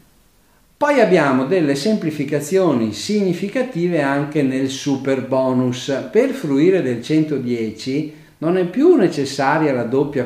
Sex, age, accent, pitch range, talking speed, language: male, 50-69, native, 125-185 Hz, 110 wpm, Italian